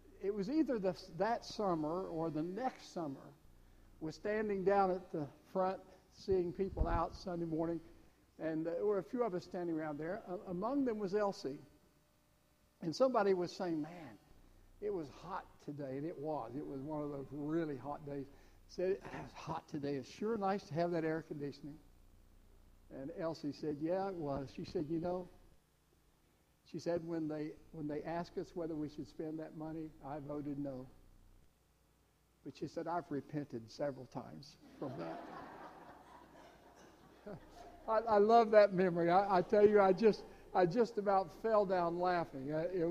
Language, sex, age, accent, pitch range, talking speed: English, male, 60-79, American, 145-195 Hz, 170 wpm